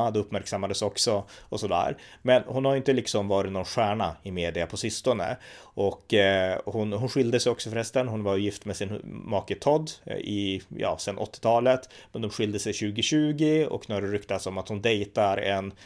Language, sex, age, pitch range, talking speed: Swedish, male, 30-49, 100-125 Hz, 190 wpm